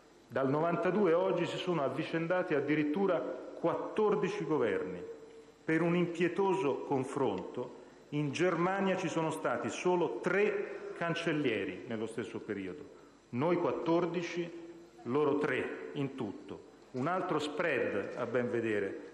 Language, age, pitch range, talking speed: Italian, 40-59, 145-180 Hz, 115 wpm